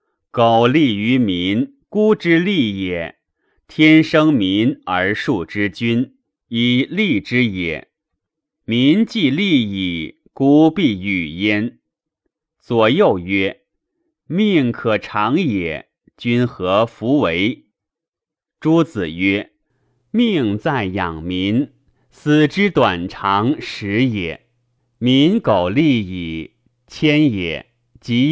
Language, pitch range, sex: Chinese, 100-150 Hz, male